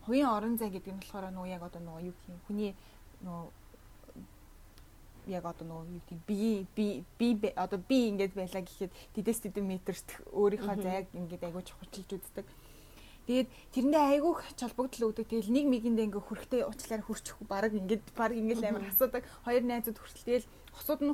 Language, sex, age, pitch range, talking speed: Russian, female, 20-39, 200-245 Hz, 135 wpm